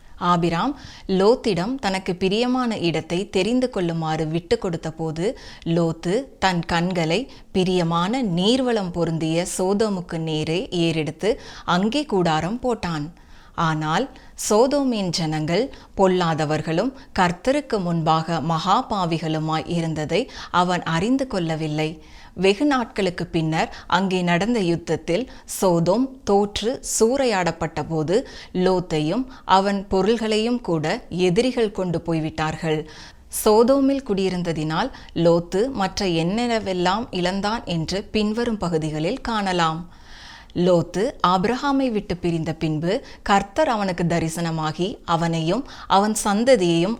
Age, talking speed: 20-39, 90 wpm